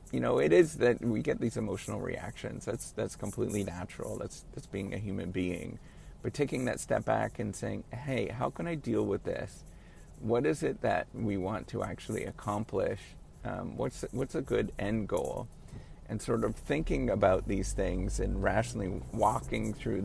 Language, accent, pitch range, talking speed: English, American, 100-120 Hz, 185 wpm